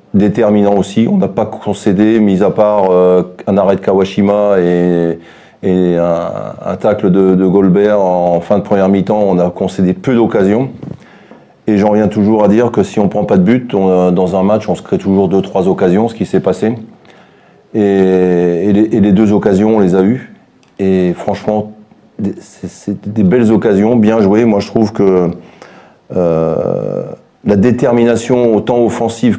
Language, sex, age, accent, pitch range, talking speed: French, male, 30-49, French, 95-110 Hz, 175 wpm